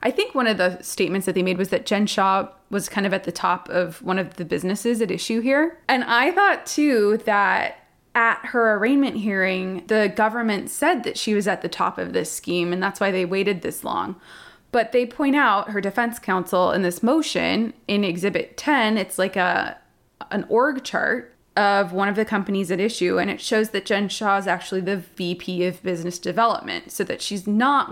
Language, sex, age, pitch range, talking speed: English, female, 20-39, 185-230 Hz, 210 wpm